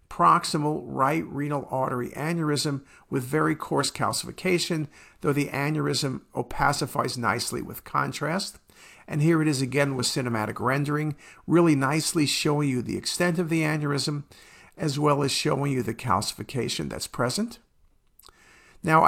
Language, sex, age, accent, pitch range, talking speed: English, male, 50-69, American, 130-160 Hz, 135 wpm